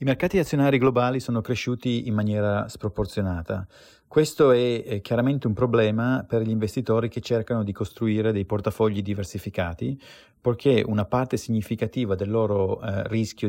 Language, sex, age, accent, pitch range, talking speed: Italian, male, 30-49, native, 105-125 Hz, 145 wpm